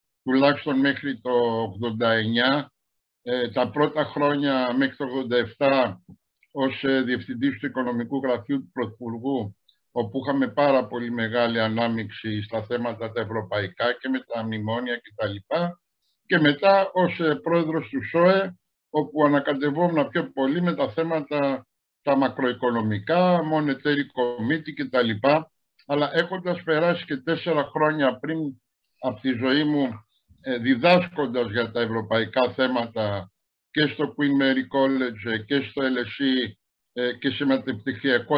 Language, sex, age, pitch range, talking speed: Greek, male, 60-79, 120-155 Hz, 120 wpm